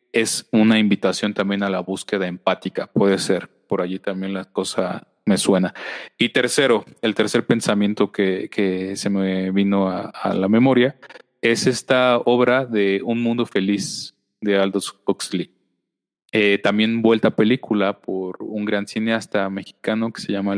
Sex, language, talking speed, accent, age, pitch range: male, Spanish, 155 wpm, Mexican, 30-49, 100-125 Hz